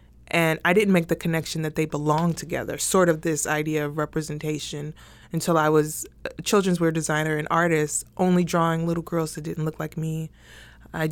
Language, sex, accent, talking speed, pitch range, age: English, female, American, 190 wpm, 155-185 Hz, 20-39